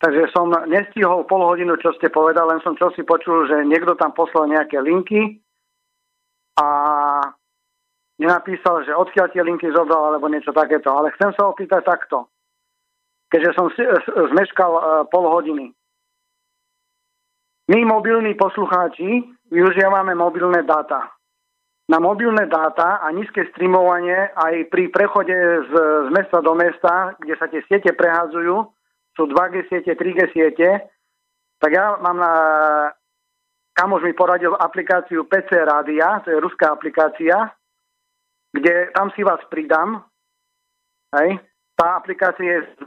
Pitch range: 165-235 Hz